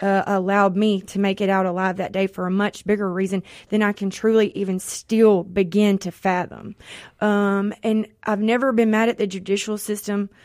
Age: 30-49